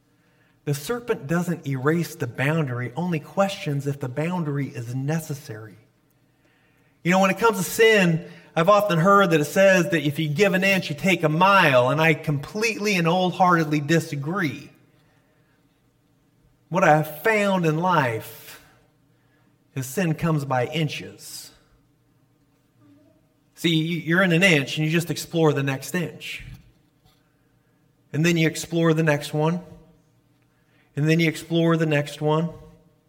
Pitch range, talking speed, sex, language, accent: 150-165 Hz, 145 wpm, male, English, American